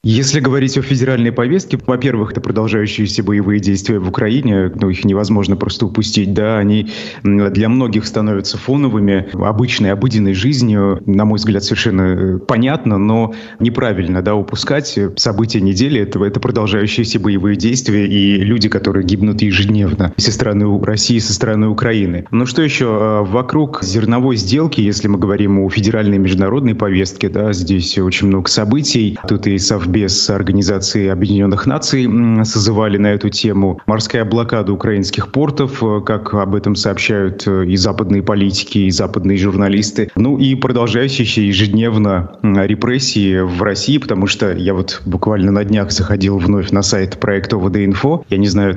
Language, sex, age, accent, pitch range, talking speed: Russian, male, 30-49, native, 100-115 Hz, 145 wpm